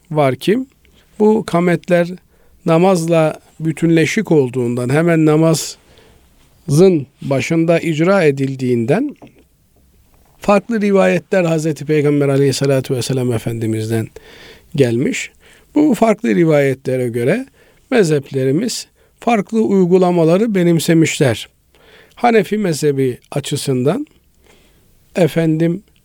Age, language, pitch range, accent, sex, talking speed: 50-69, Turkish, 135-190 Hz, native, male, 75 wpm